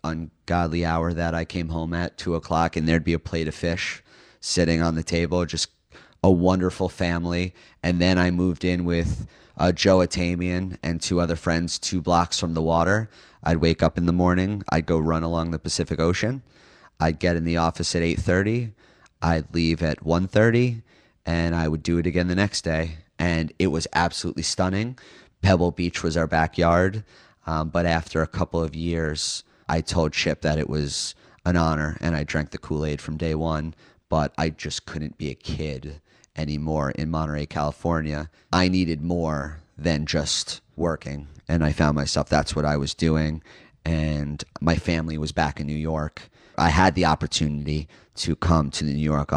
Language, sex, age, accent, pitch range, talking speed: English, male, 30-49, American, 75-85 Hz, 190 wpm